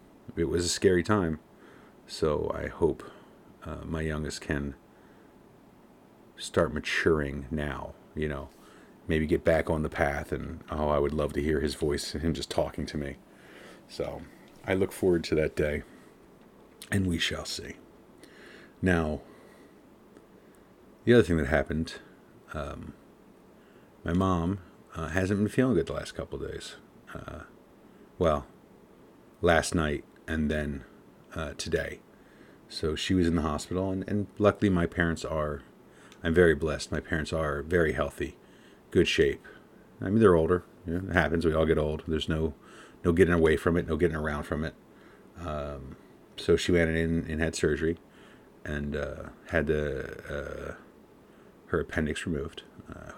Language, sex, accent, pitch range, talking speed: English, male, American, 75-85 Hz, 155 wpm